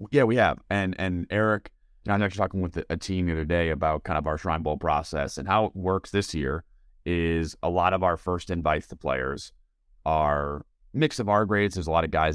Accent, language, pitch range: American, English, 80-100 Hz